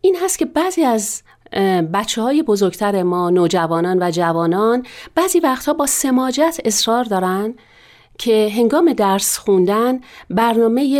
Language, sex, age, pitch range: Persian, female, 40-59, 175-245 Hz